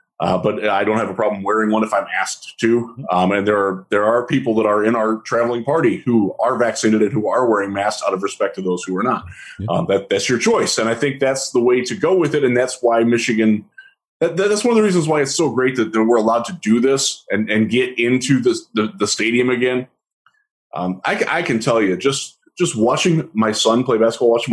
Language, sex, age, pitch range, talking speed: English, male, 20-39, 115-150 Hz, 245 wpm